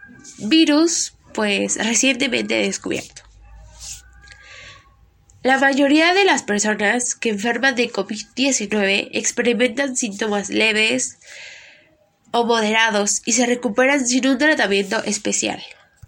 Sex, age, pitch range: female, 20-39, 210-260 Hz